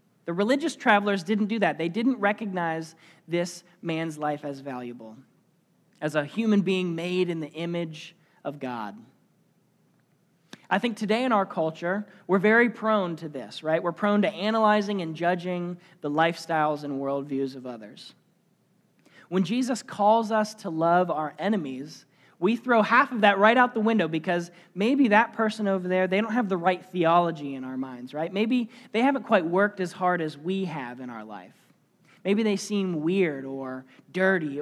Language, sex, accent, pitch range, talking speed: English, male, American, 150-205 Hz, 175 wpm